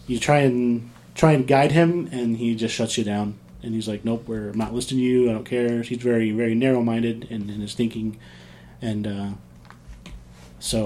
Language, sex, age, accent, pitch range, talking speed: English, male, 20-39, American, 100-130 Hz, 200 wpm